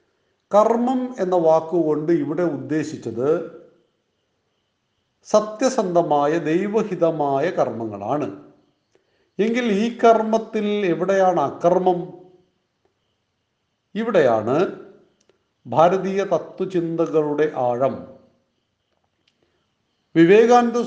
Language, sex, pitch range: Malayalam, male, 150-190 Hz